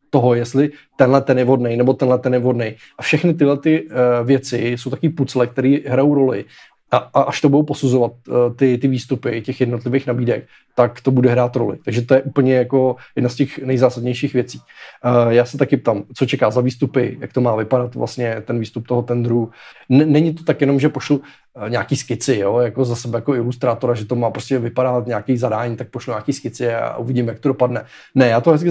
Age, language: 20-39, Czech